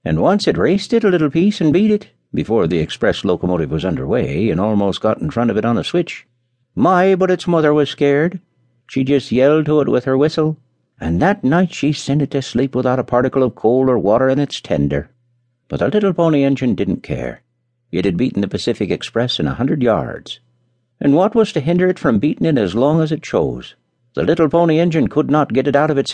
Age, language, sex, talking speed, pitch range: 60-79, English, male, 235 wpm, 120-155 Hz